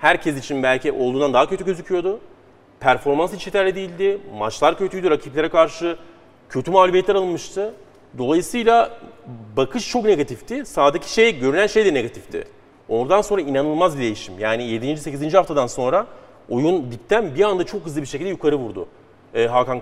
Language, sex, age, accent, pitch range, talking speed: Turkish, male, 40-59, native, 135-190 Hz, 150 wpm